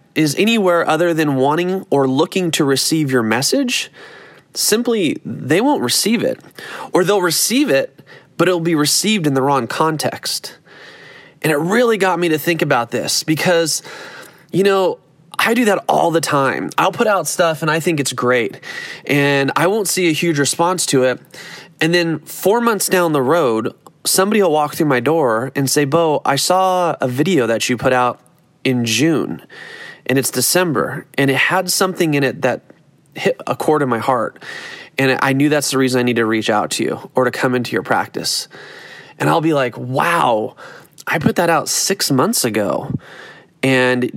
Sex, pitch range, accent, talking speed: male, 135-190 Hz, American, 185 wpm